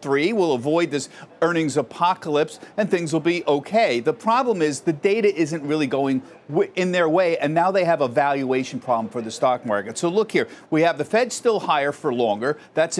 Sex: male